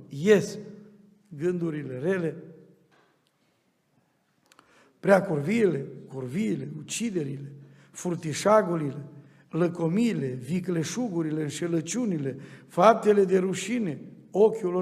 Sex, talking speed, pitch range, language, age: male, 55 wpm, 165-215 Hz, Romanian, 60-79